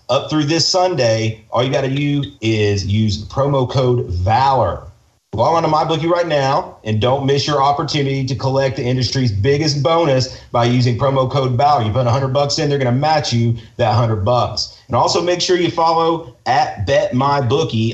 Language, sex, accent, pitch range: English, male, American, 120-145 Hz